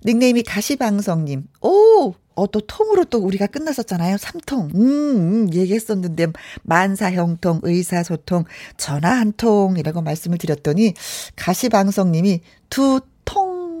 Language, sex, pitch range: Korean, female, 175-245 Hz